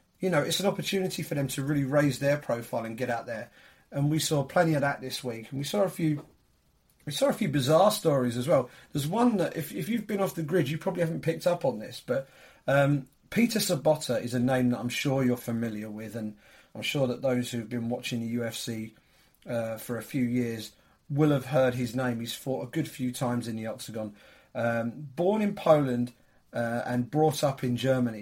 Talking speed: 225 wpm